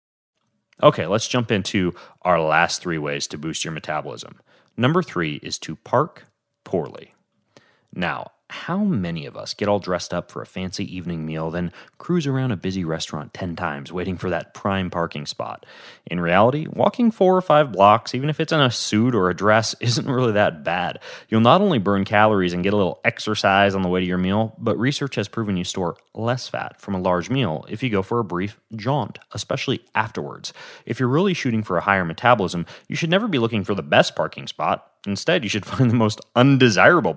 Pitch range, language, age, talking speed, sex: 85-125 Hz, English, 30-49, 205 wpm, male